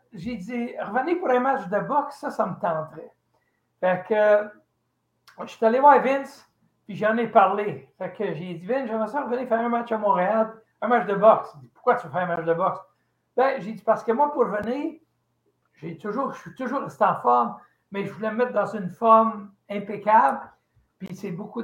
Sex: male